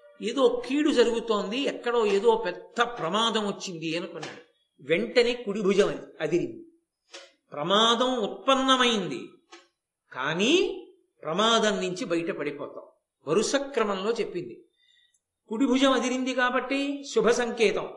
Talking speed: 90 wpm